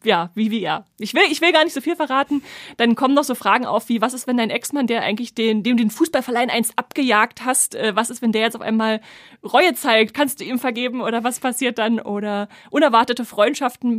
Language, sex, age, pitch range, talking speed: German, female, 30-49, 210-260 Hz, 230 wpm